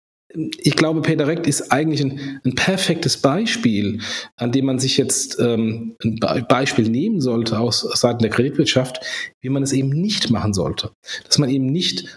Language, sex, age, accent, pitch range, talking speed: German, male, 40-59, German, 120-145 Hz, 175 wpm